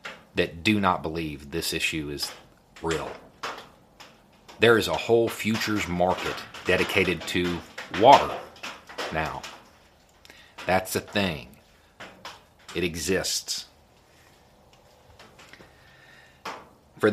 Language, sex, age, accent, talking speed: English, male, 40-59, American, 85 wpm